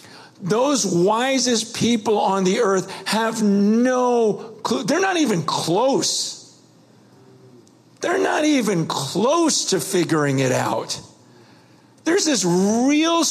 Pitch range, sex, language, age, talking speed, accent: 140-215 Hz, male, English, 50-69, 110 wpm, American